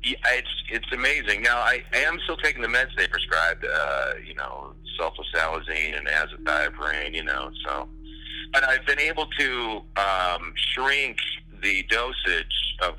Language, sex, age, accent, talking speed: English, male, 40-59, American, 145 wpm